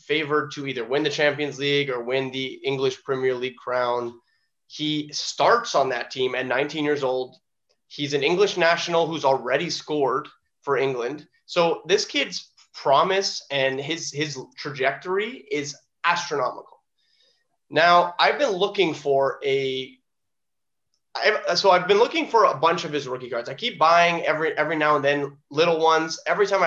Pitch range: 135-170 Hz